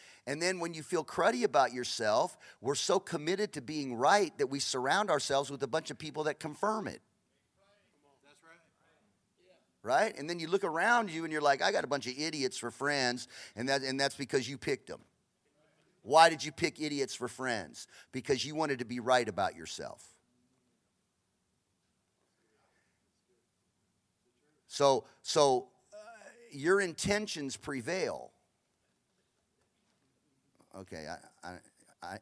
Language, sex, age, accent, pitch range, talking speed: English, male, 40-59, American, 125-175 Hz, 145 wpm